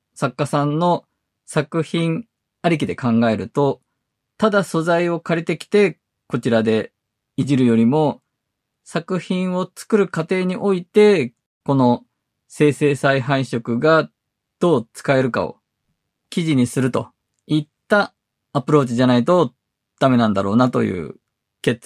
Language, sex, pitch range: Japanese, male, 120-170 Hz